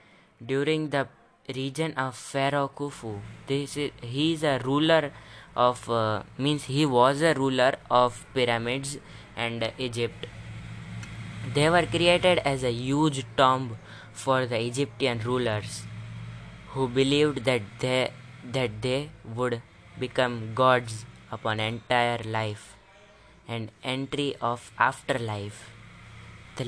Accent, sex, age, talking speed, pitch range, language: Indian, female, 20-39, 115 wpm, 115-145 Hz, English